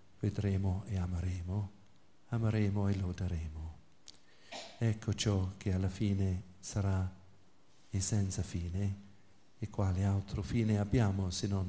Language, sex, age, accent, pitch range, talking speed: Italian, male, 50-69, native, 95-110 Hz, 115 wpm